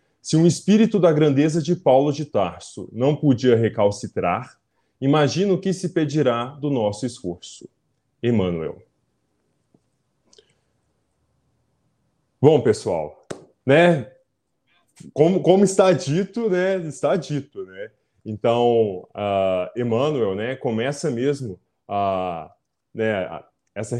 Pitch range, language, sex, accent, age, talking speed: 110-150 Hz, Portuguese, male, Brazilian, 20-39, 105 wpm